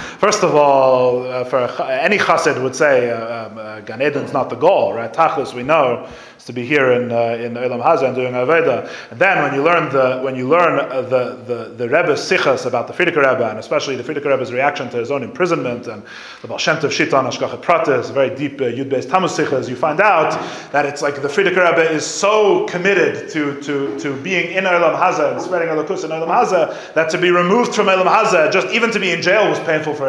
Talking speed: 230 wpm